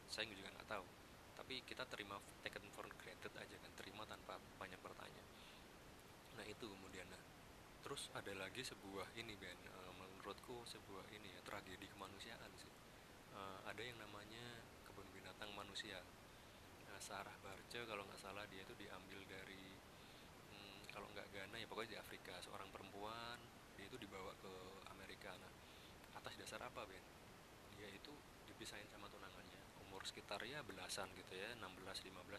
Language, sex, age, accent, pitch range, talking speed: Indonesian, male, 20-39, native, 95-110 Hz, 150 wpm